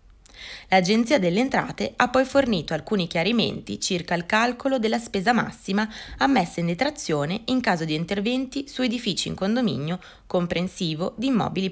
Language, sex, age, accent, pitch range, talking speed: Italian, female, 20-39, native, 160-220 Hz, 145 wpm